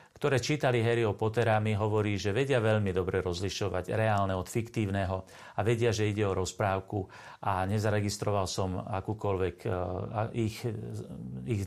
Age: 40-59